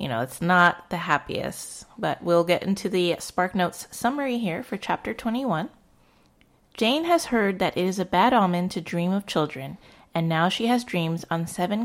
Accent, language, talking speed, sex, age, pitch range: American, English, 185 wpm, female, 30-49, 170-220 Hz